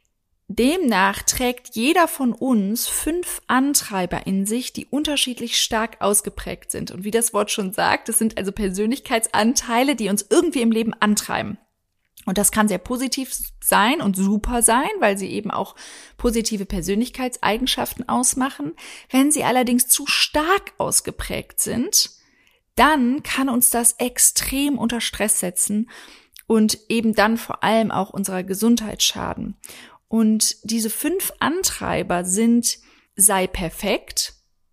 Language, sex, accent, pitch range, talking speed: German, female, German, 210-260 Hz, 135 wpm